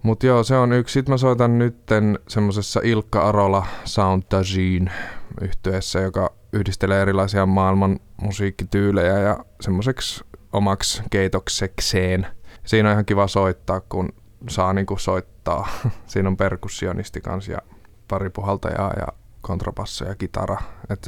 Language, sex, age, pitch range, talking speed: Finnish, male, 20-39, 95-105 Hz, 120 wpm